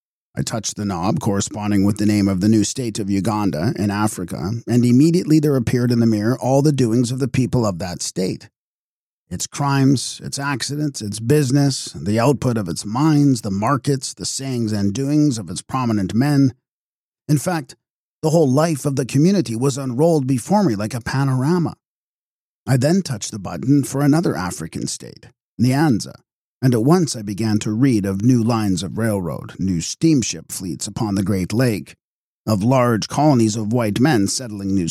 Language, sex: English, male